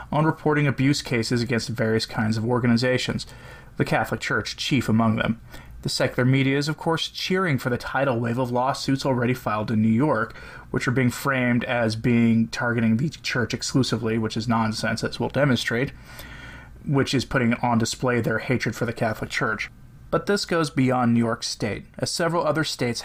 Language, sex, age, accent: English, male, 20-39, American